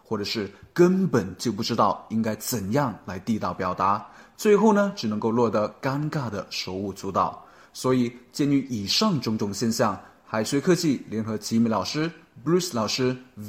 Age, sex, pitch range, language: 20-39, male, 110-165 Hz, Chinese